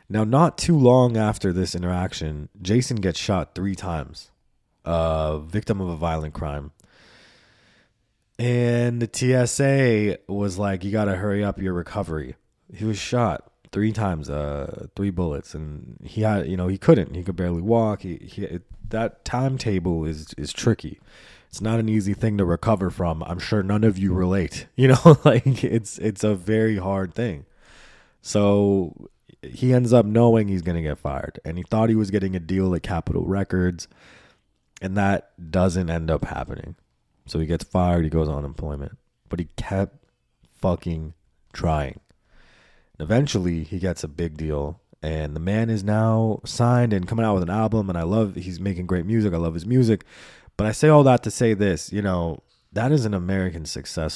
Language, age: English, 20-39